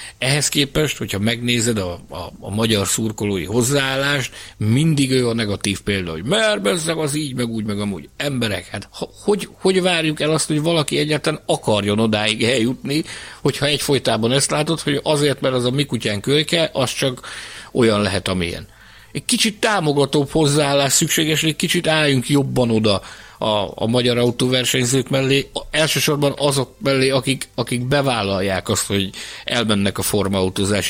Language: Hungarian